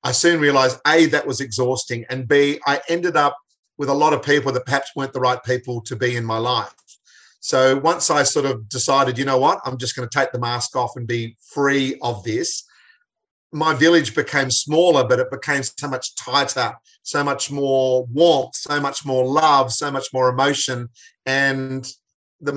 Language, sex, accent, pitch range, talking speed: English, male, Australian, 125-145 Hz, 195 wpm